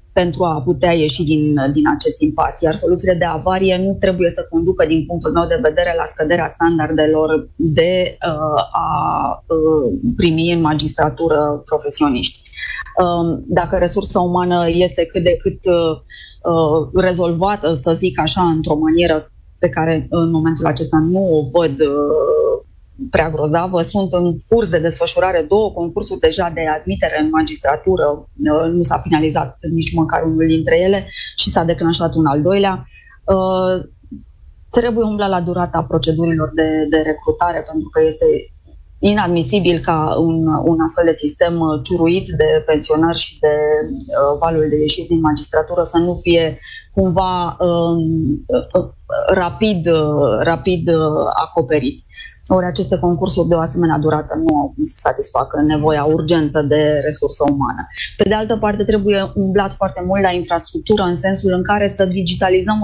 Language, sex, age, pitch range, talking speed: Romanian, female, 20-39, 160-190 Hz, 140 wpm